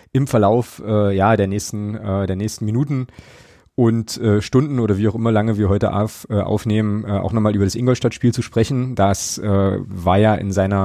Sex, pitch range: male, 100-125 Hz